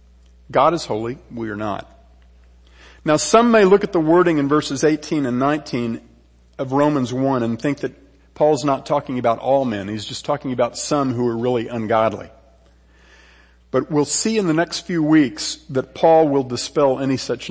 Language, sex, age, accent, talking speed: English, male, 50-69, American, 180 wpm